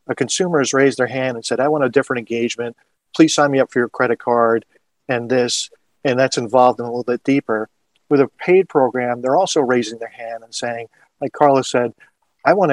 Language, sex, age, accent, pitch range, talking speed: English, male, 40-59, American, 120-145 Hz, 220 wpm